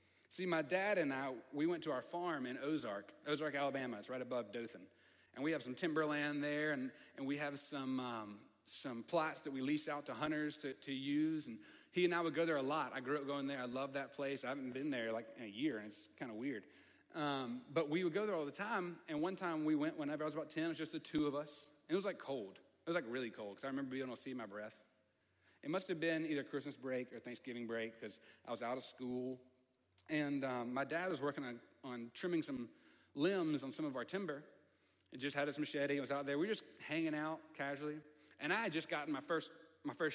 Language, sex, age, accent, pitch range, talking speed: English, male, 40-59, American, 130-160 Hz, 255 wpm